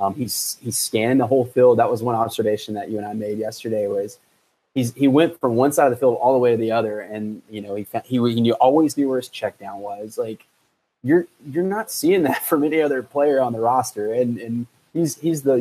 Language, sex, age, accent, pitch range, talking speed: English, male, 20-39, American, 115-145 Hz, 245 wpm